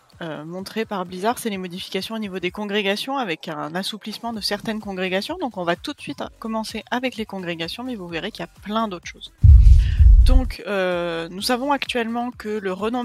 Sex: female